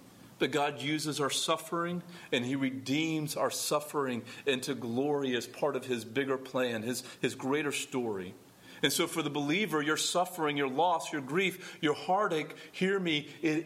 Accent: American